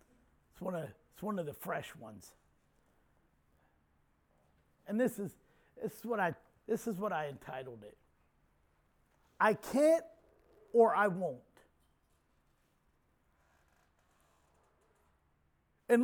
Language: English